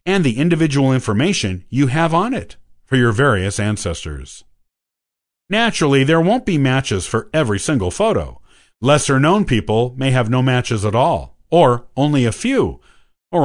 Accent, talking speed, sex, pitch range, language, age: American, 150 wpm, male, 105-165 Hz, English, 50-69